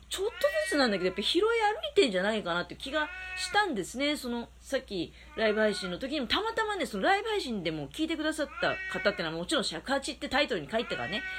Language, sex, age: Japanese, female, 40-59